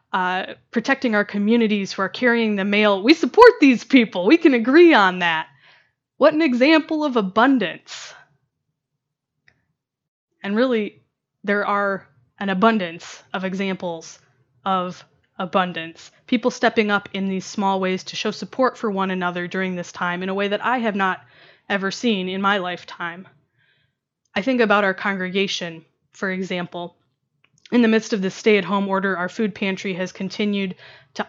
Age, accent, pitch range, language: 20-39, American, 185-225 Hz, English